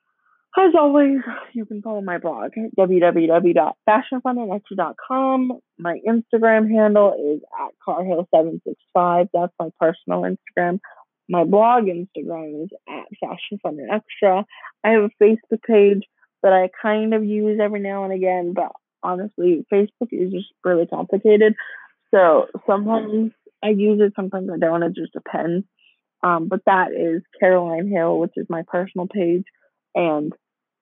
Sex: female